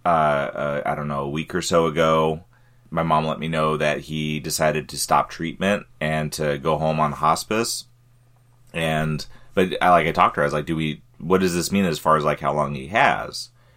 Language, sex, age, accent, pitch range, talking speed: English, male, 30-49, American, 75-95 Hz, 225 wpm